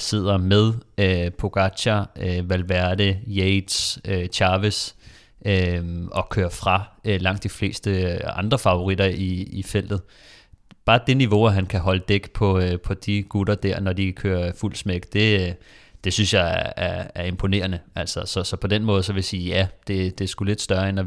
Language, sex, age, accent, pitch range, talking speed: Danish, male, 30-49, native, 90-105 Hz, 195 wpm